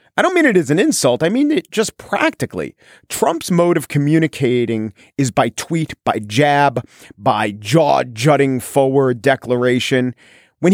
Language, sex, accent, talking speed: English, male, American, 150 wpm